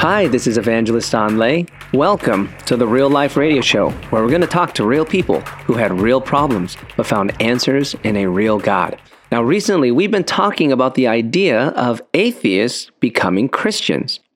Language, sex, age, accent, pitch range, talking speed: English, male, 30-49, American, 115-140 Hz, 180 wpm